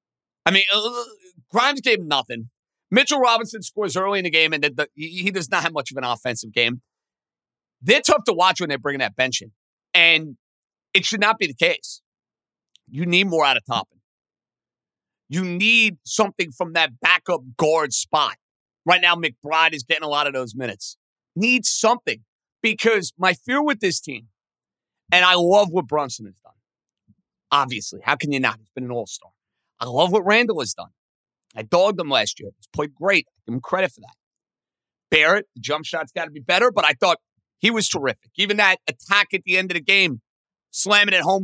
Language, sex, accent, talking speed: English, male, American, 195 wpm